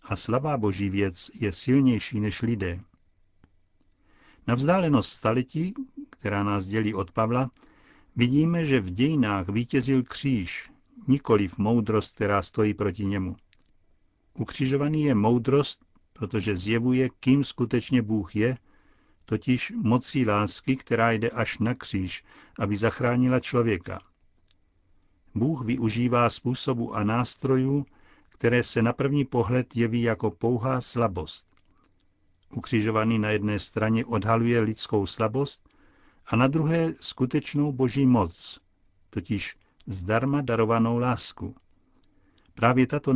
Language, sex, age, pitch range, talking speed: Czech, male, 60-79, 105-130 Hz, 110 wpm